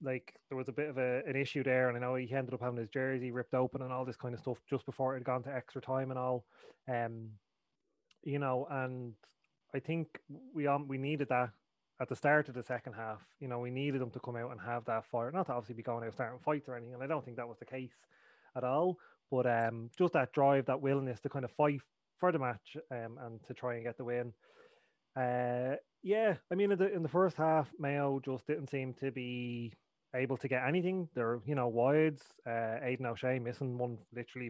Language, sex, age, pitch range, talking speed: English, male, 20-39, 120-145 Hz, 240 wpm